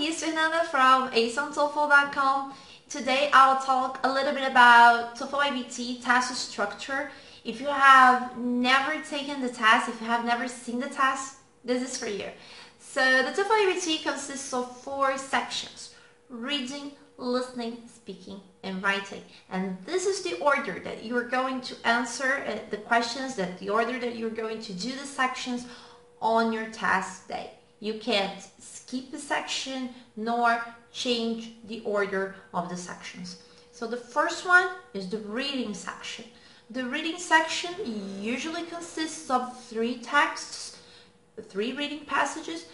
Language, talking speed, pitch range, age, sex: English, 145 wpm, 230-280 Hz, 20-39, female